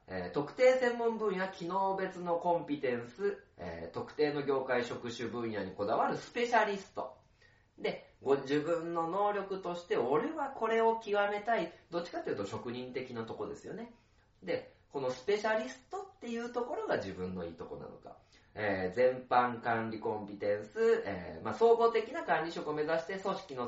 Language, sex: Japanese, male